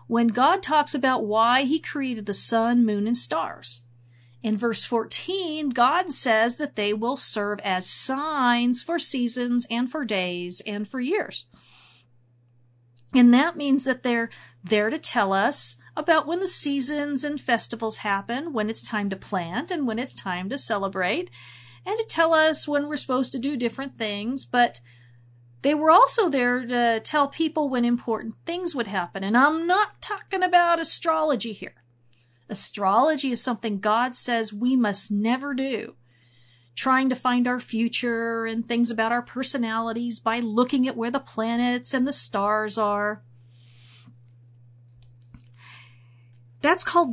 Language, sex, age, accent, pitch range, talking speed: English, female, 40-59, American, 195-280 Hz, 155 wpm